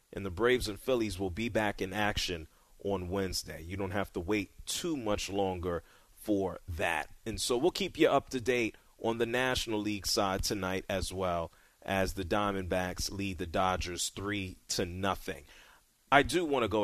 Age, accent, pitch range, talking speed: 30-49, American, 95-145 Hz, 185 wpm